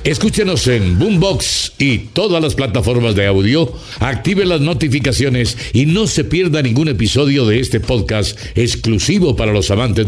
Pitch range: 105-140 Hz